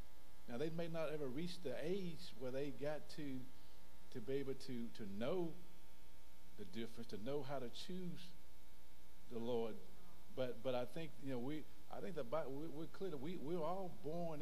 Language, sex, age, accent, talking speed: English, male, 50-69, American, 185 wpm